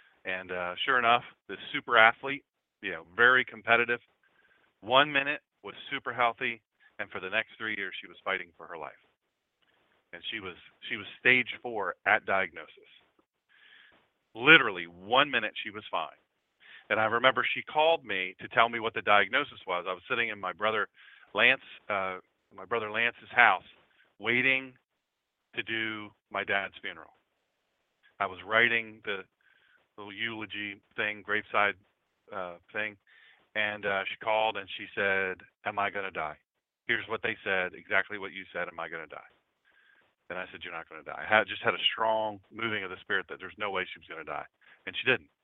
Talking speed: 180 wpm